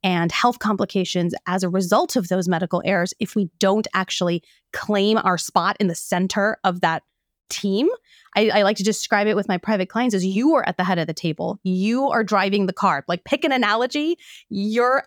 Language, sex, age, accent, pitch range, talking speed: English, female, 20-39, American, 180-220 Hz, 205 wpm